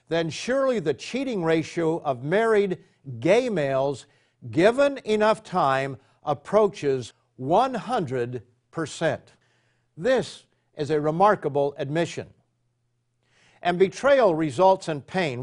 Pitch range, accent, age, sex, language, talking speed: 135-190 Hz, American, 50-69, male, English, 95 wpm